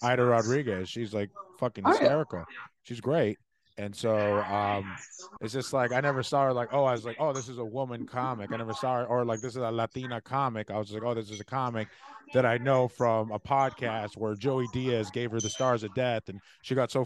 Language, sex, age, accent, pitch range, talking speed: English, male, 20-39, American, 115-140 Hz, 235 wpm